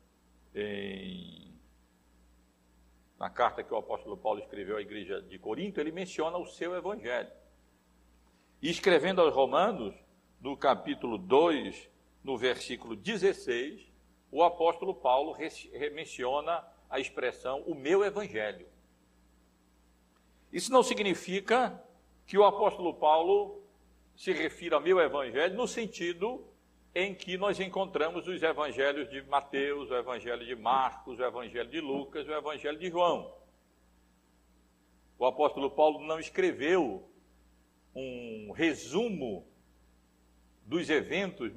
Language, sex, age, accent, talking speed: Portuguese, male, 60-79, Brazilian, 115 wpm